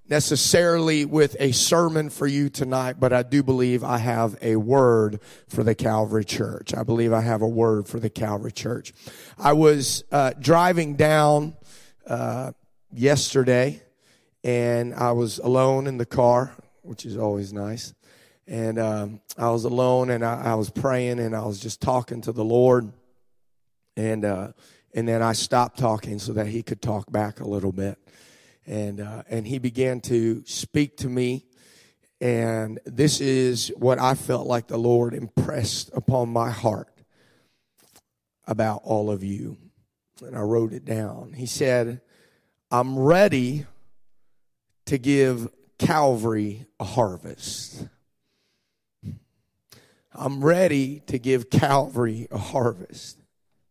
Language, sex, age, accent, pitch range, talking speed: English, male, 30-49, American, 110-135 Hz, 145 wpm